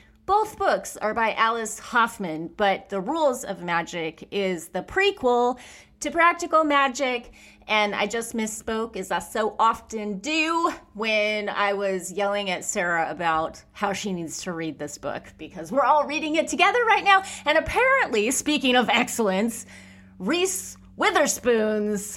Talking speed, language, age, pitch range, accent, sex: 150 wpm, English, 30-49, 195-280 Hz, American, female